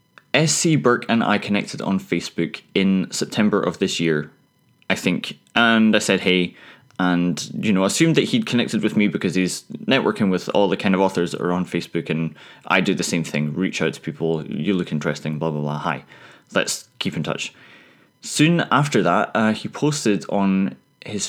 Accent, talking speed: British, 195 wpm